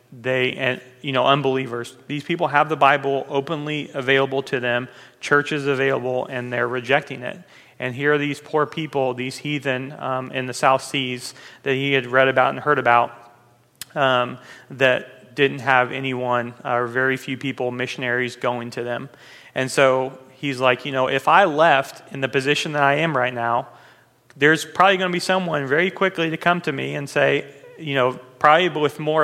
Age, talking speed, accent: 30-49, 185 wpm, American